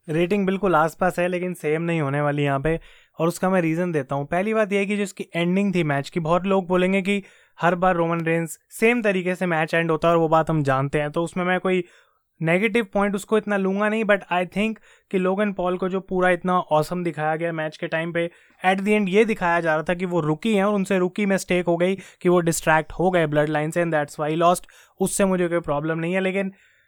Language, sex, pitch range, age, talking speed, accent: Hindi, male, 160-195 Hz, 20-39, 250 wpm, native